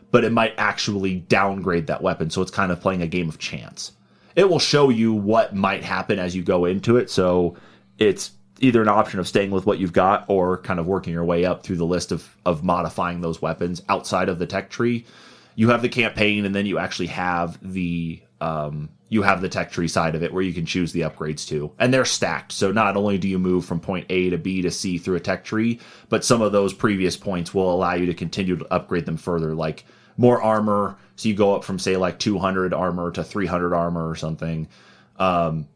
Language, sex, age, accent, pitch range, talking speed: English, male, 30-49, American, 85-105 Hz, 230 wpm